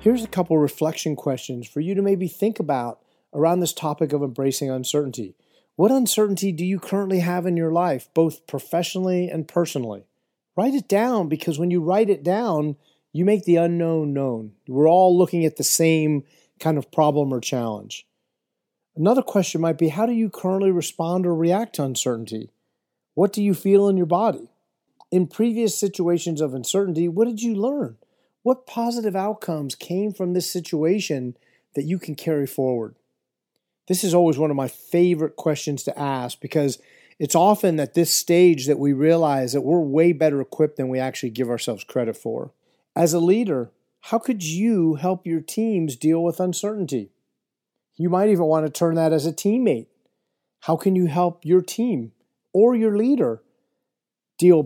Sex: male